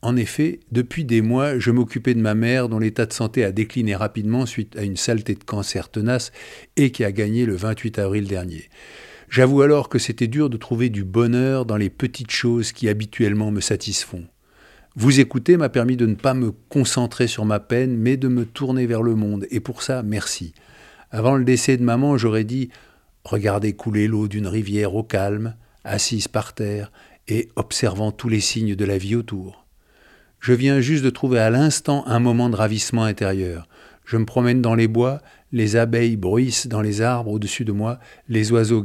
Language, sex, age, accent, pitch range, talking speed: French, male, 50-69, French, 105-120 Hz, 200 wpm